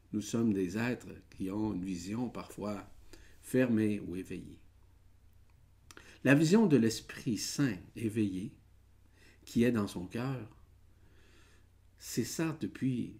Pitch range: 95-110 Hz